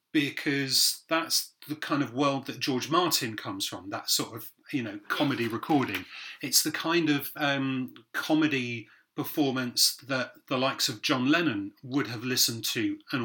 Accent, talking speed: British, 165 wpm